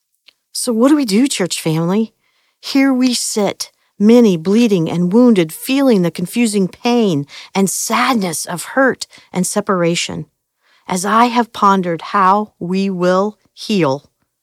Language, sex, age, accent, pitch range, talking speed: English, female, 50-69, American, 170-220 Hz, 135 wpm